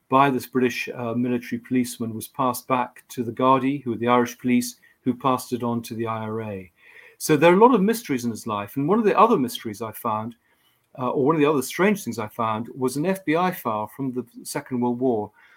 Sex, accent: male, British